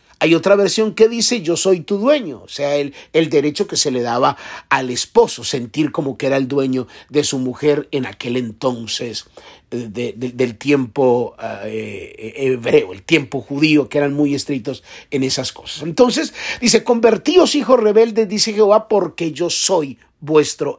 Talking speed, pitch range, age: 170 wpm, 140-210 Hz, 50-69